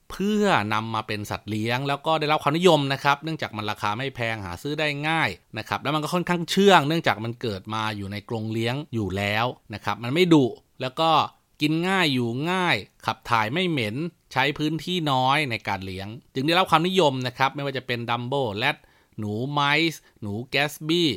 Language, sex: Thai, male